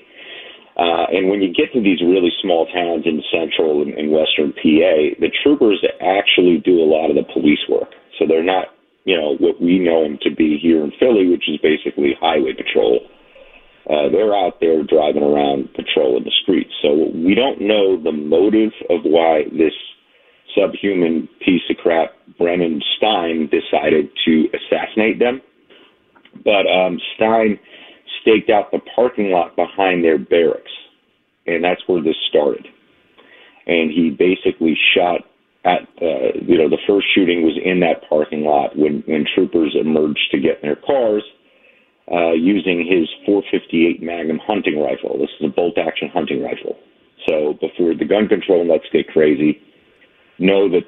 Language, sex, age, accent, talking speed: English, male, 40-59, American, 165 wpm